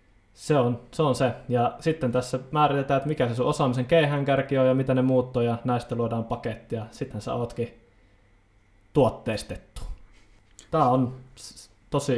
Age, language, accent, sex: 20-39, Finnish, native, male